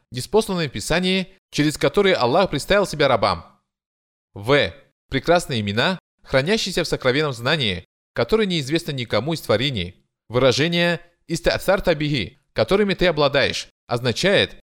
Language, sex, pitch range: Russian, male, 130-180 Hz